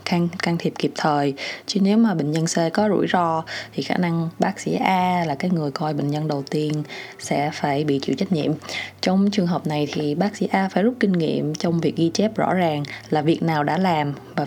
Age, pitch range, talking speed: 20-39, 150-190 Hz, 240 wpm